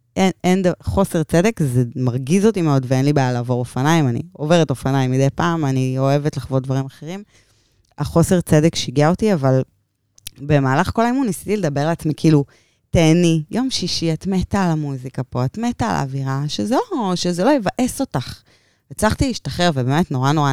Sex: female